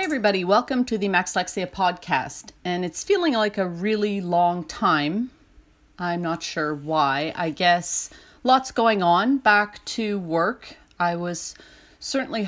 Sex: female